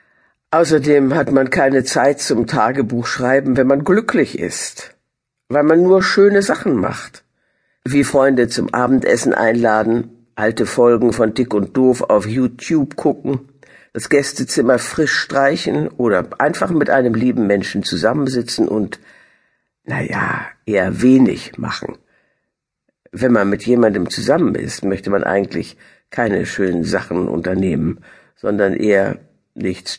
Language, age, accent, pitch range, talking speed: German, 60-79, German, 115-150 Hz, 130 wpm